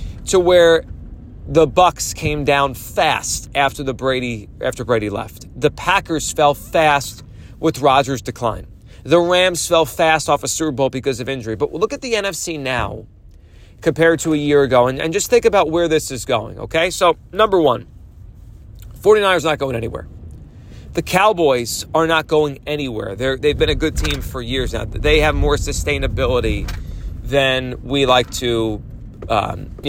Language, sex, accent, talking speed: English, male, American, 170 wpm